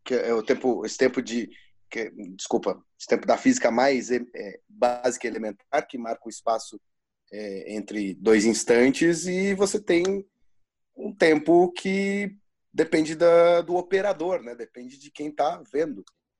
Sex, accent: male, Brazilian